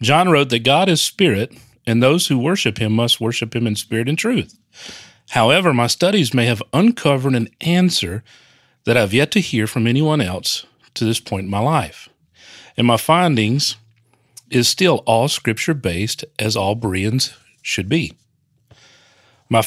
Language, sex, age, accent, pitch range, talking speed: English, male, 40-59, American, 115-155 Hz, 165 wpm